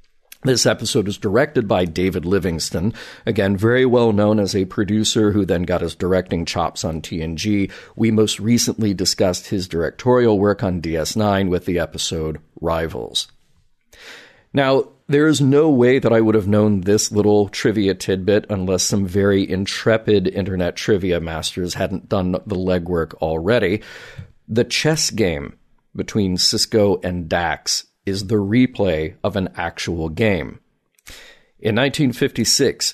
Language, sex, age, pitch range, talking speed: English, male, 40-59, 95-115 Hz, 140 wpm